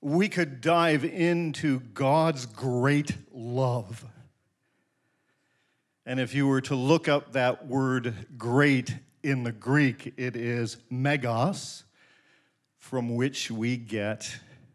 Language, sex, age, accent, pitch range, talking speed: English, male, 50-69, American, 115-145 Hz, 110 wpm